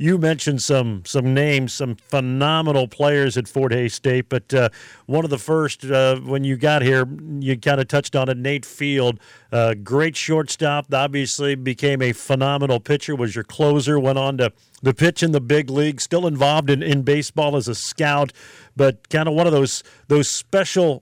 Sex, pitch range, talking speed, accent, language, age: male, 135-155 Hz, 190 wpm, American, English, 50-69